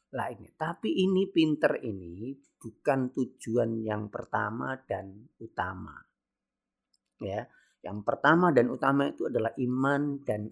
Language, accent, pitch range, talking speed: Indonesian, native, 125-180 Hz, 120 wpm